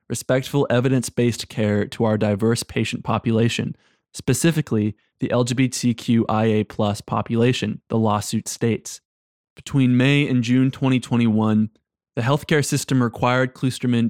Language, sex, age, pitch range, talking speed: English, male, 20-39, 115-130 Hz, 105 wpm